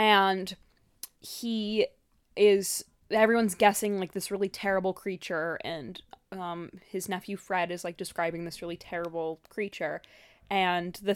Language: English